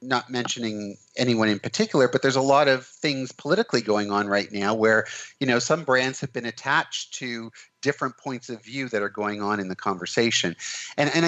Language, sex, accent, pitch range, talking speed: English, male, American, 105-140 Hz, 200 wpm